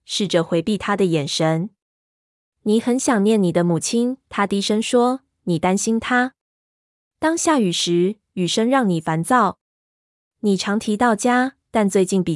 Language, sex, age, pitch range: Chinese, female, 20-39, 175-225 Hz